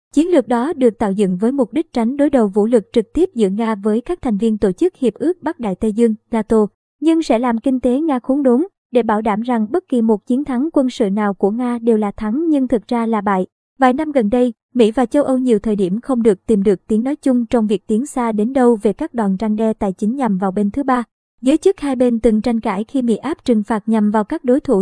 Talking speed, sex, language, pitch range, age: 275 wpm, male, Vietnamese, 215-255 Hz, 20-39